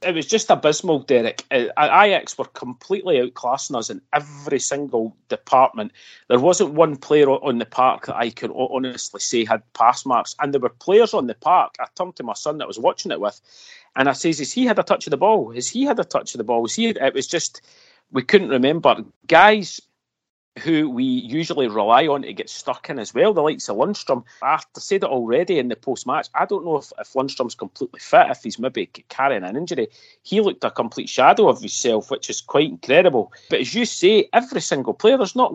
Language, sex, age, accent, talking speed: English, male, 40-59, British, 220 wpm